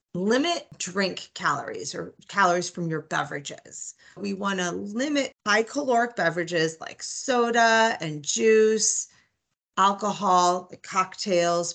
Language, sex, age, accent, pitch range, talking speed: English, female, 30-49, American, 170-220 Hz, 105 wpm